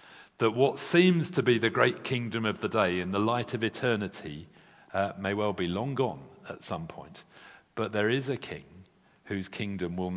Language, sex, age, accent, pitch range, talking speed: English, male, 50-69, British, 95-125 Hz, 195 wpm